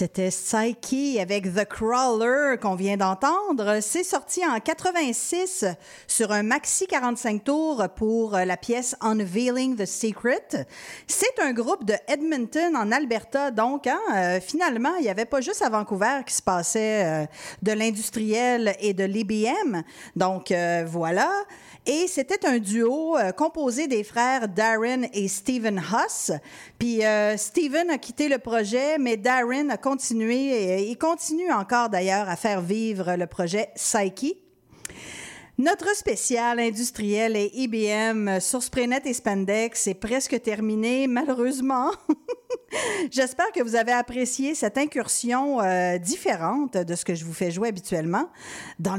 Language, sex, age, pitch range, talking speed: French, female, 40-59, 200-275 Hz, 140 wpm